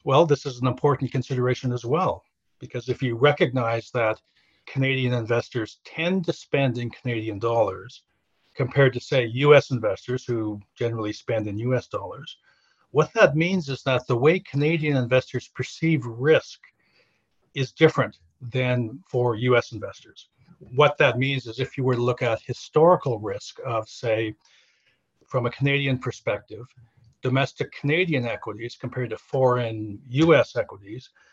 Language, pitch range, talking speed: English, 120-145 Hz, 145 wpm